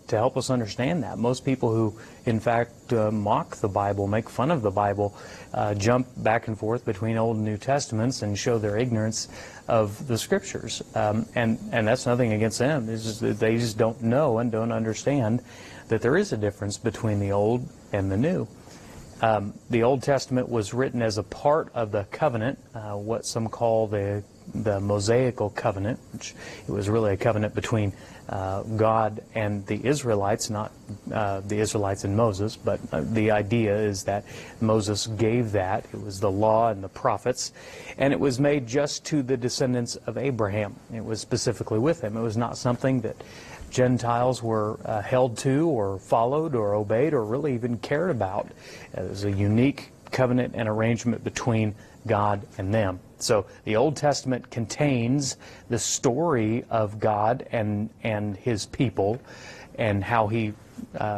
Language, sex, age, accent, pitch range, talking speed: English, male, 30-49, American, 105-125 Hz, 175 wpm